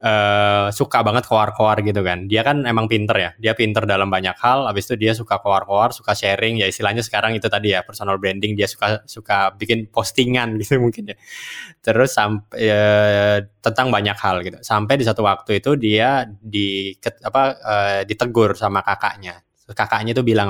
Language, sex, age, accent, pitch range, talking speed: Indonesian, male, 20-39, native, 100-120 Hz, 185 wpm